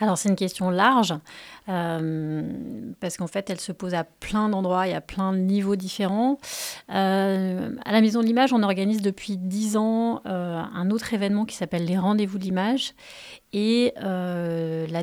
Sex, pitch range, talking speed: female, 185-215 Hz, 180 wpm